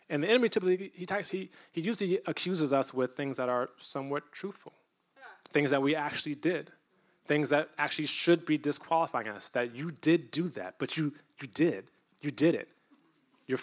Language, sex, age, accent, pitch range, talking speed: English, male, 20-39, American, 125-160 Hz, 175 wpm